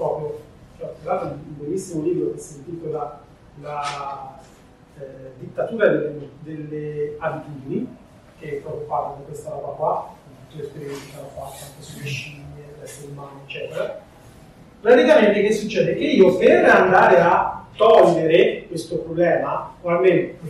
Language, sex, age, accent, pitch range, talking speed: Italian, male, 30-49, native, 145-230 Hz, 140 wpm